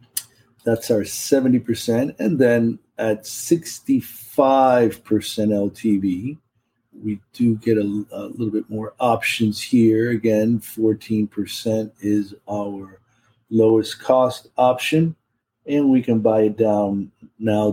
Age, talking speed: 50-69, 110 wpm